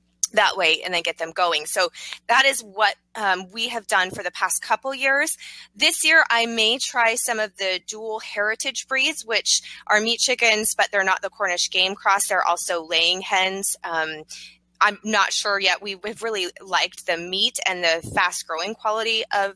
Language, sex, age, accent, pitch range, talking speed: English, female, 20-39, American, 175-220 Hz, 190 wpm